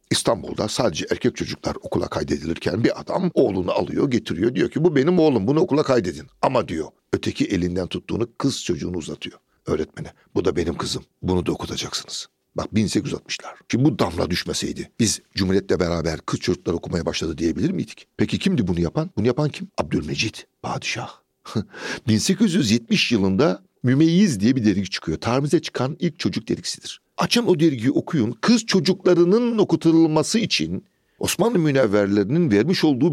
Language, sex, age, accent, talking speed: Turkish, male, 60-79, native, 150 wpm